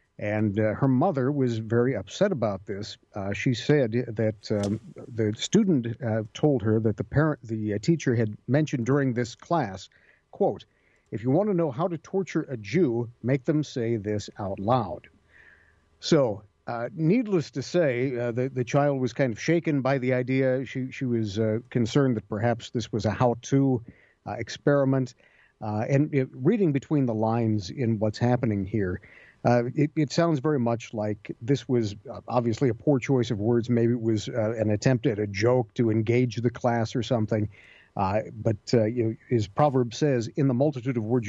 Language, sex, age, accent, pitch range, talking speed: English, male, 50-69, American, 110-135 Hz, 185 wpm